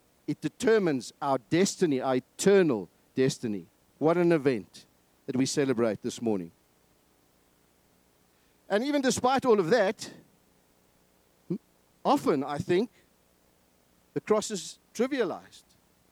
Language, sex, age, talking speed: English, male, 50-69, 105 wpm